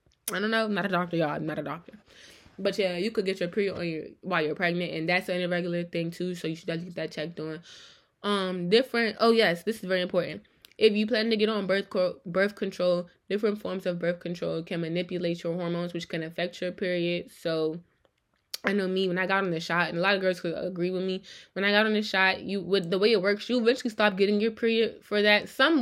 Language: English